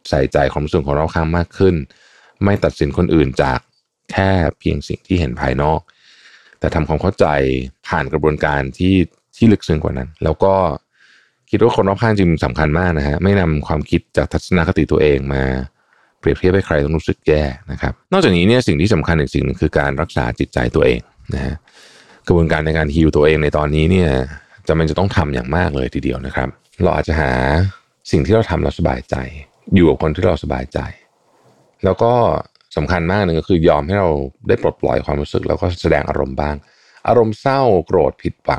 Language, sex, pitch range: Thai, male, 70-90 Hz